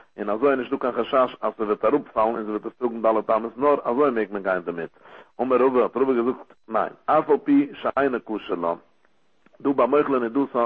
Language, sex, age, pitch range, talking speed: English, male, 60-79, 110-135 Hz, 105 wpm